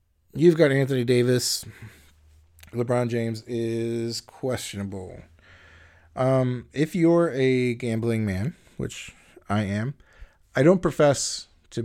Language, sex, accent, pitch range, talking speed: English, male, American, 105-120 Hz, 105 wpm